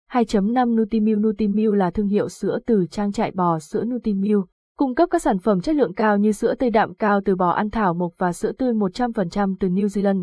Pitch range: 190-230 Hz